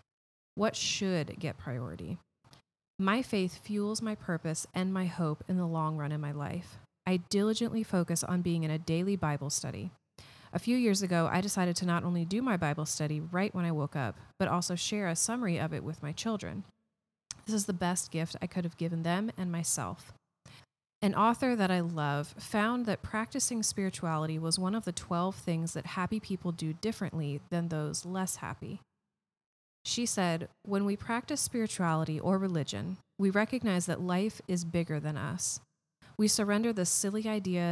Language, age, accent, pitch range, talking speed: English, 30-49, American, 155-195 Hz, 180 wpm